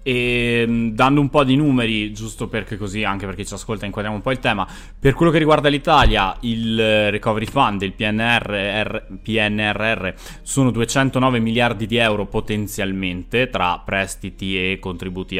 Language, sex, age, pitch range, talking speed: Italian, male, 20-39, 100-125 Hz, 150 wpm